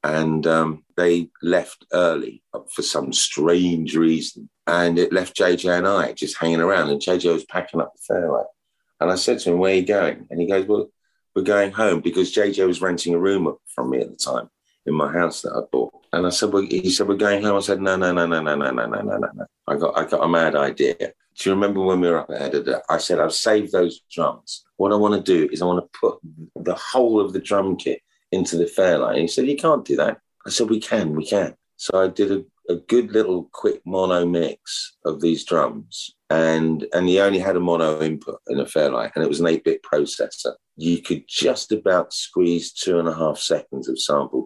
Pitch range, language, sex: 85-100 Hz, English, male